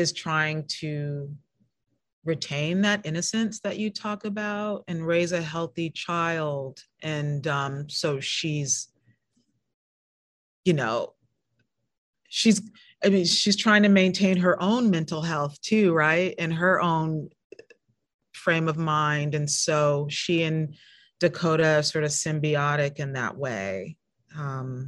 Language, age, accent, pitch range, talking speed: English, 30-49, American, 150-195 Hz, 125 wpm